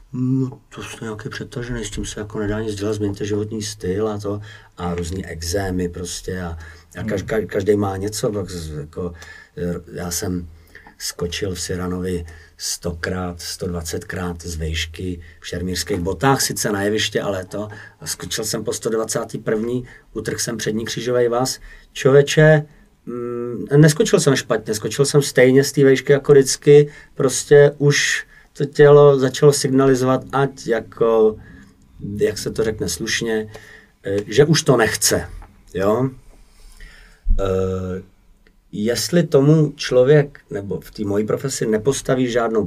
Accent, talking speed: native, 130 wpm